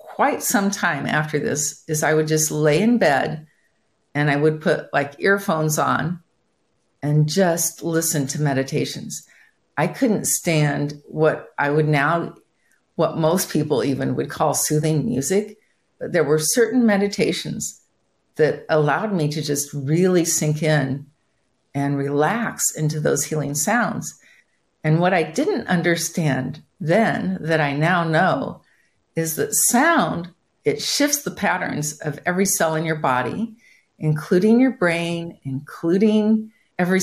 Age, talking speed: 50-69, 140 wpm